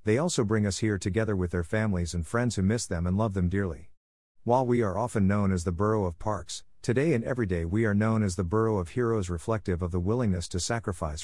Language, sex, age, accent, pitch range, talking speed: English, male, 50-69, American, 90-110 Hz, 245 wpm